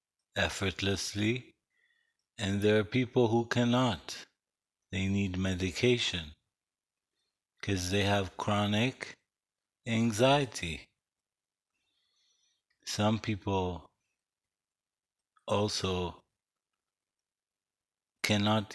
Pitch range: 95-115 Hz